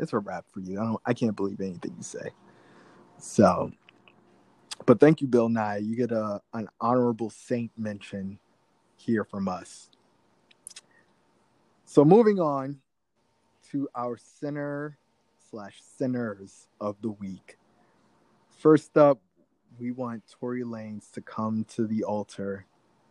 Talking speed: 130 wpm